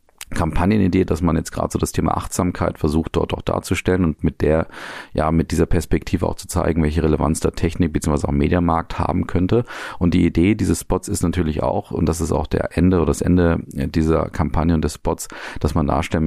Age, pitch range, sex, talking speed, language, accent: 40-59, 75-90 Hz, male, 210 wpm, German, German